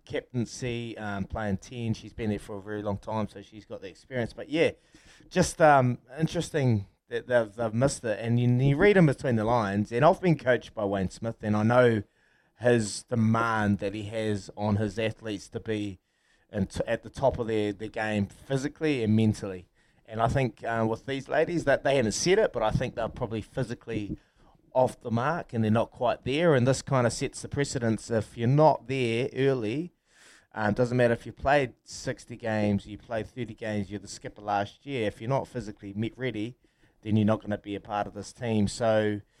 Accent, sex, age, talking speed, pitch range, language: Australian, male, 20-39, 215 wpm, 110-135 Hz, English